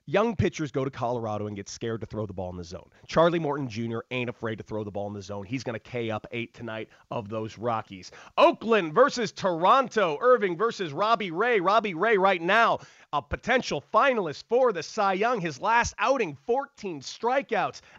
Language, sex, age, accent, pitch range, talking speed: English, male, 30-49, American, 135-205 Hz, 200 wpm